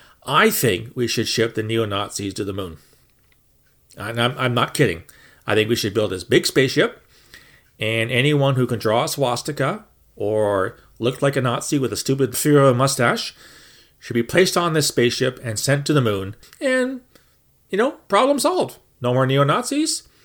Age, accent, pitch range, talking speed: 40-59, American, 110-150 Hz, 170 wpm